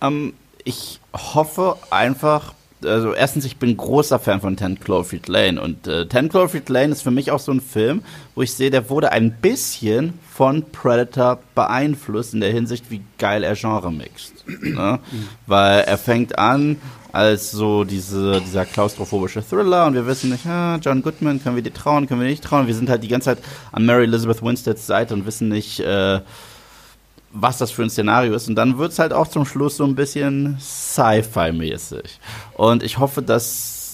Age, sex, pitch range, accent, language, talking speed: 30-49, male, 110-135 Hz, German, German, 190 wpm